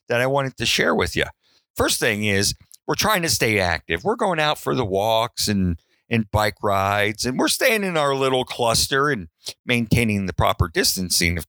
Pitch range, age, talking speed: 95-130 Hz, 50-69, 200 wpm